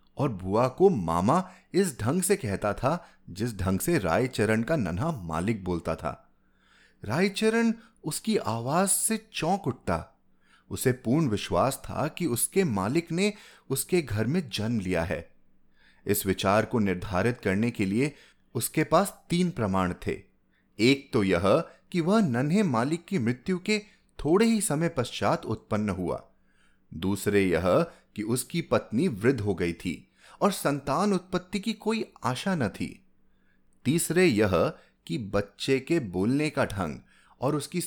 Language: Hindi